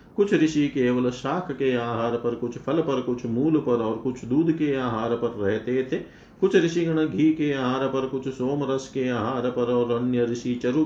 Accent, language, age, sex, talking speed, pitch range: native, Hindi, 40-59, male, 200 wpm, 110-135 Hz